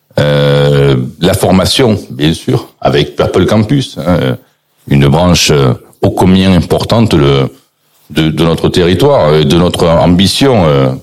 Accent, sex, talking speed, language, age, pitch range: French, male, 130 wpm, French, 60-79, 75-95 Hz